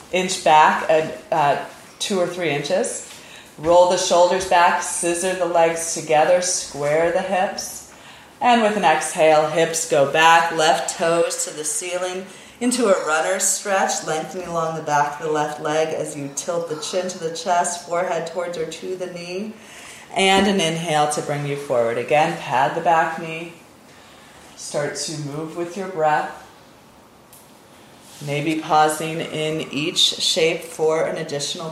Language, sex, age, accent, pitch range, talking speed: English, female, 30-49, American, 155-175 Hz, 155 wpm